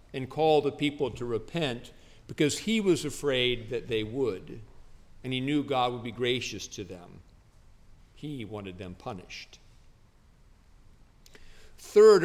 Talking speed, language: 130 wpm, English